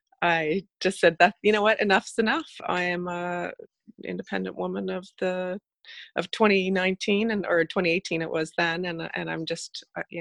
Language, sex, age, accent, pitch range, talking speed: English, female, 30-49, American, 160-180 Hz, 170 wpm